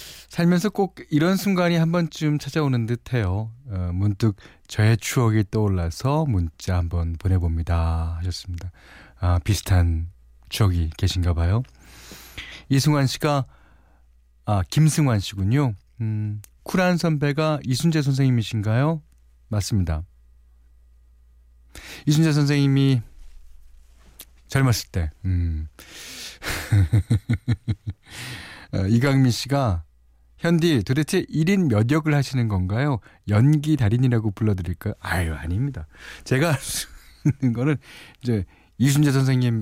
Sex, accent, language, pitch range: male, native, Korean, 85-130 Hz